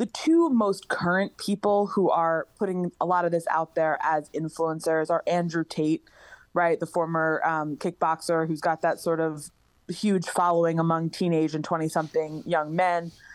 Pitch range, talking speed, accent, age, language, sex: 160-190 Hz, 170 wpm, American, 20-39, English, female